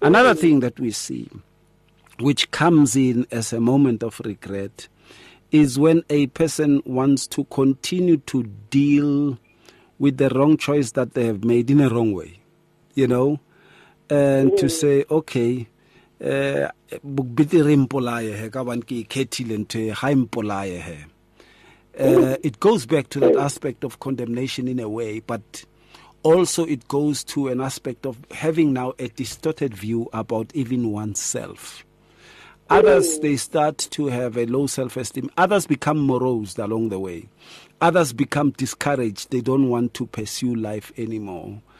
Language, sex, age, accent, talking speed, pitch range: English, male, 50-69, South African, 130 wpm, 115-145 Hz